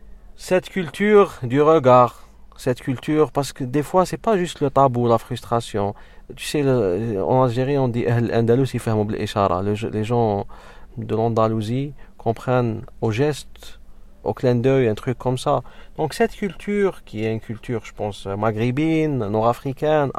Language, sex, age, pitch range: French, male, 40-59, 110-135 Hz